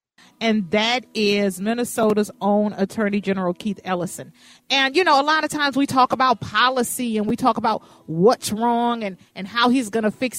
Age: 40-59